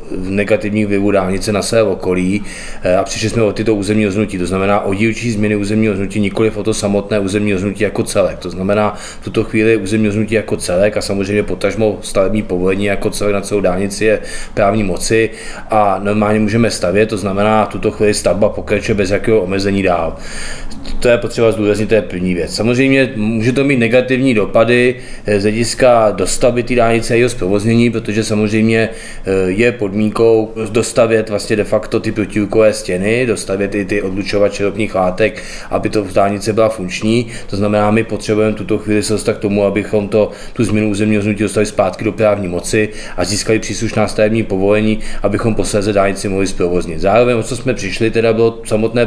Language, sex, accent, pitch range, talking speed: Czech, male, native, 100-110 Hz, 180 wpm